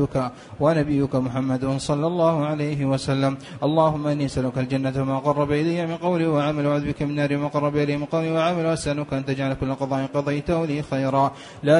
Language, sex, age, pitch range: Arabic, male, 30-49, 140-165 Hz